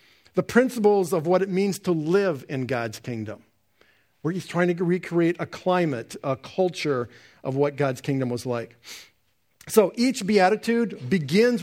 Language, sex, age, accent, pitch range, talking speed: English, male, 50-69, American, 130-190 Hz, 155 wpm